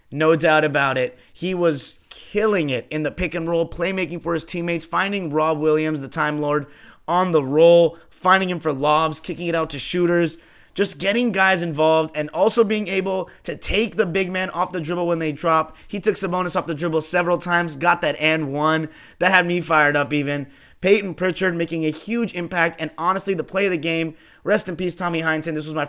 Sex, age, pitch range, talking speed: male, 30-49, 150-180 Hz, 215 wpm